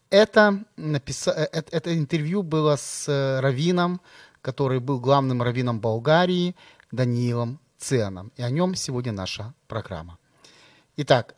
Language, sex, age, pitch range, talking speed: Ukrainian, male, 30-49, 125-155 Hz, 105 wpm